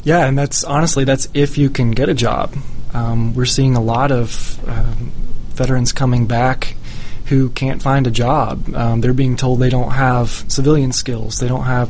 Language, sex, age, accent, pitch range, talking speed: English, male, 20-39, American, 115-135 Hz, 190 wpm